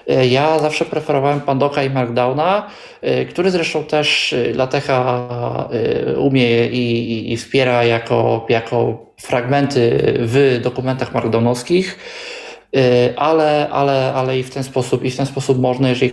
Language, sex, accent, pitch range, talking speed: Polish, male, native, 120-140 Hz, 115 wpm